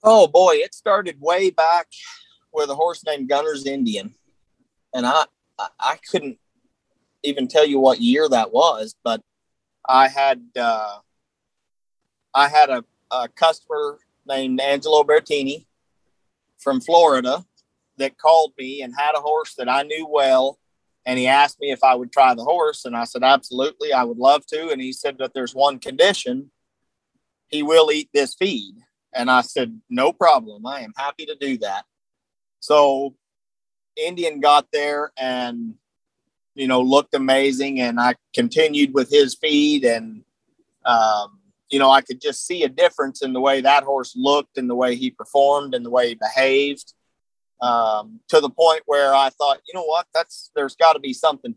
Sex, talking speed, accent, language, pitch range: male, 165 wpm, American, English, 130-165 Hz